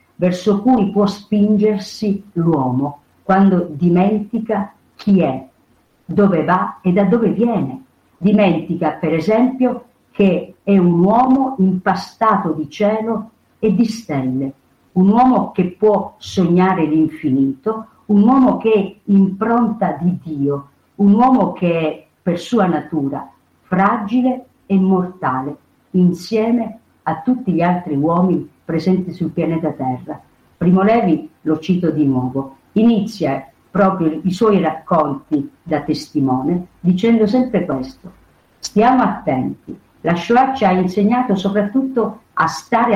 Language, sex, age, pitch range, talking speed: Italian, female, 50-69, 160-220 Hz, 120 wpm